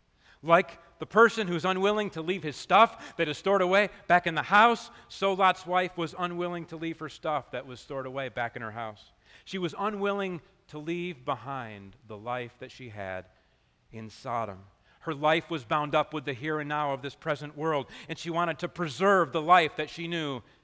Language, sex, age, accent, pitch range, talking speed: English, male, 40-59, American, 115-185 Hz, 205 wpm